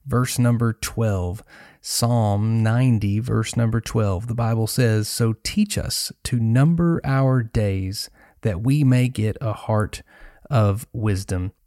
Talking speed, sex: 135 wpm, male